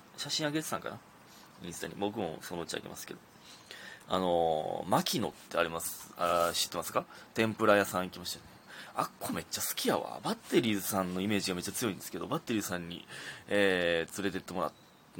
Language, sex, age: Japanese, male, 30-49